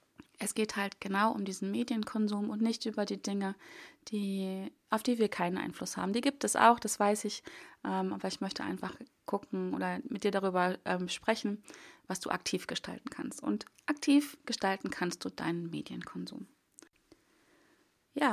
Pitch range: 210-270 Hz